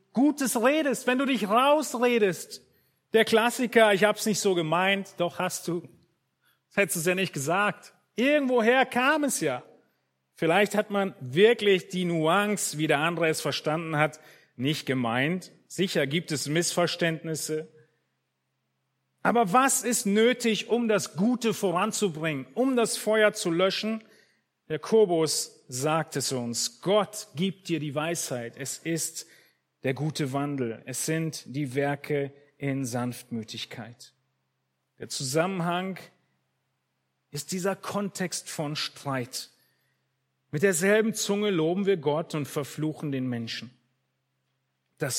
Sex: male